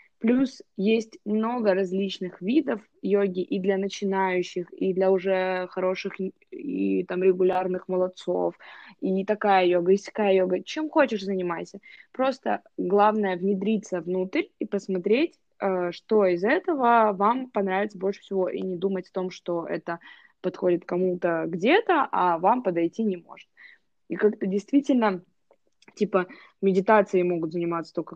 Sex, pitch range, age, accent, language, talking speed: female, 180-225 Hz, 20-39, native, Russian, 135 wpm